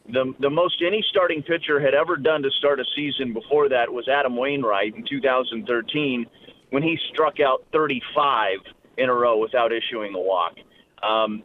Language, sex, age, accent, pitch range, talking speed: English, male, 30-49, American, 135-170 Hz, 175 wpm